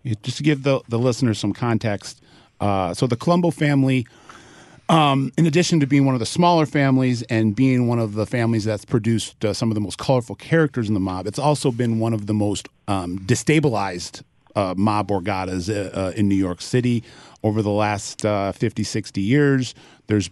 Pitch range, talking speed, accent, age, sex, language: 100-125 Hz, 200 wpm, American, 40-59, male, English